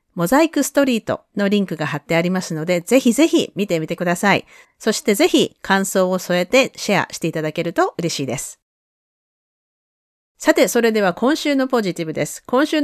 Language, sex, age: Japanese, female, 40-59